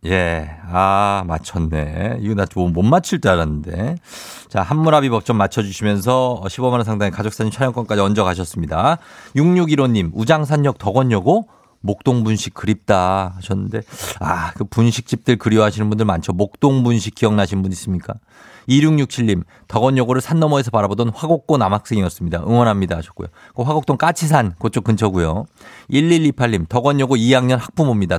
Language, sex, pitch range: Korean, male, 100-150 Hz